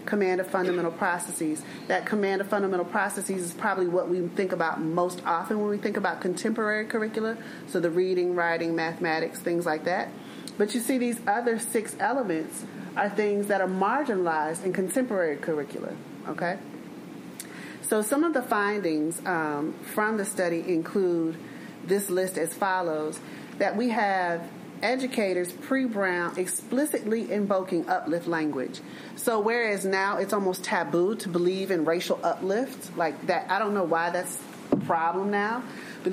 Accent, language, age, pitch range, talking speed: American, English, 30-49, 170-210 Hz, 155 wpm